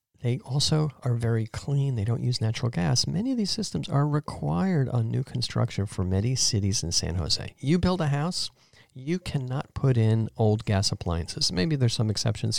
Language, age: English, 50-69